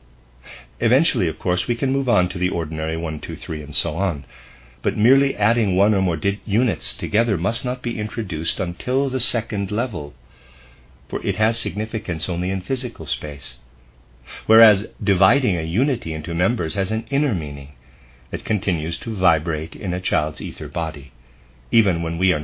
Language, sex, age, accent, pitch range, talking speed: English, male, 50-69, American, 65-105 Hz, 170 wpm